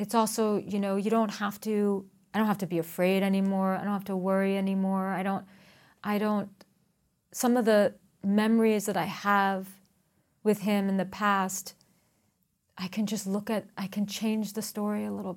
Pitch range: 185-210 Hz